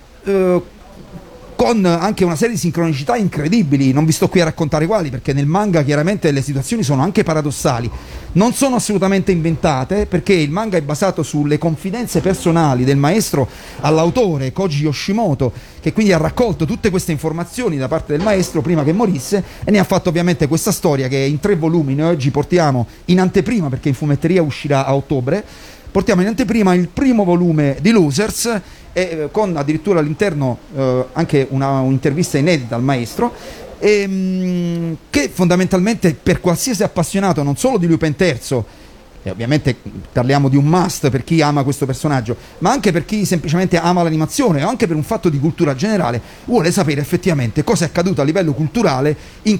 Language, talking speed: Italian, 175 wpm